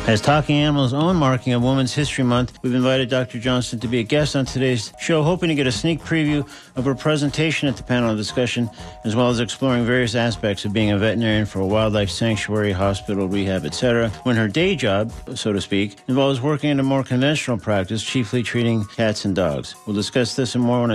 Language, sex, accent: English, male, American